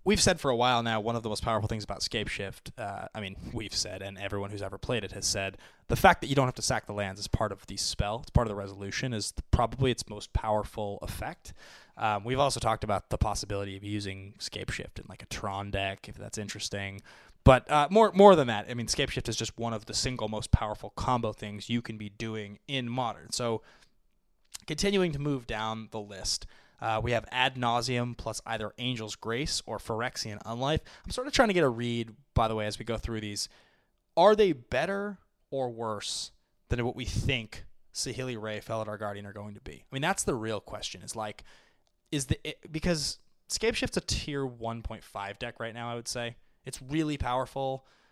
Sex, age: male, 20-39